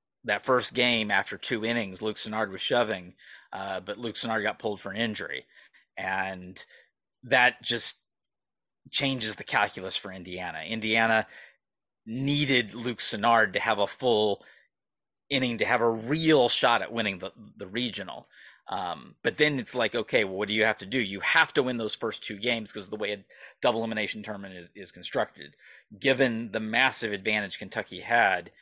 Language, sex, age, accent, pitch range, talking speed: English, male, 30-49, American, 105-130 Hz, 175 wpm